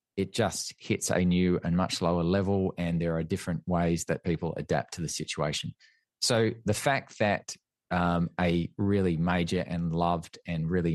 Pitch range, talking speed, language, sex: 85-100 Hz, 175 wpm, English, male